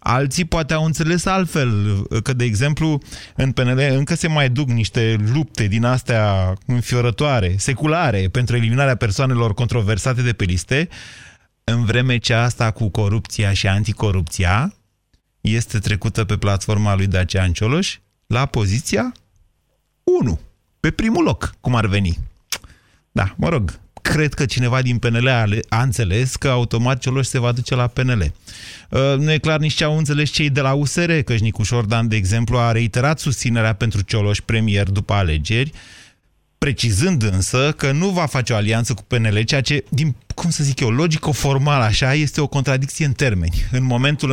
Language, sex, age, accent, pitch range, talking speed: Romanian, male, 30-49, native, 105-140 Hz, 160 wpm